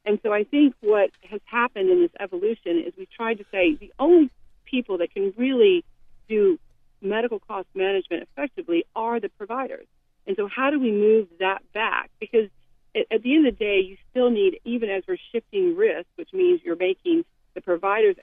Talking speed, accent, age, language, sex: 190 wpm, American, 40-59, English, female